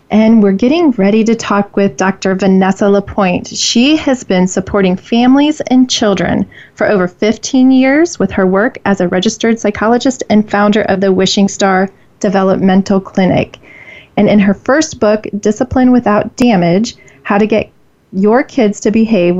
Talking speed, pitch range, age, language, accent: 160 wpm, 190-225 Hz, 30-49, English, American